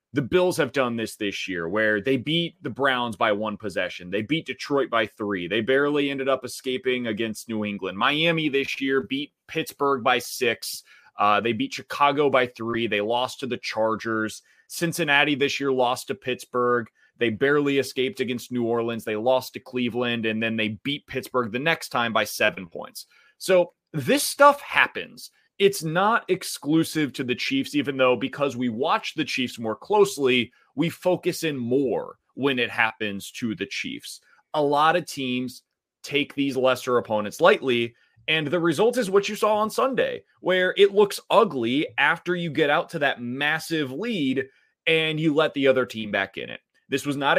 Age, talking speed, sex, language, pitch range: 30-49, 180 wpm, male, English, 120-160 Hz